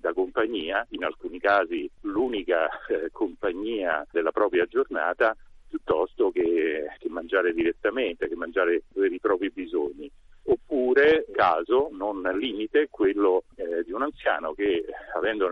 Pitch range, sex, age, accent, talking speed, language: 355-425 Hz, male, 50-69, native, 130 wpm, Italian